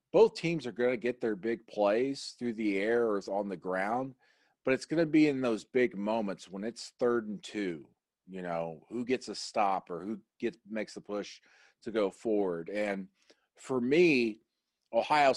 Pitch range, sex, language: 100-120 Hz, male, English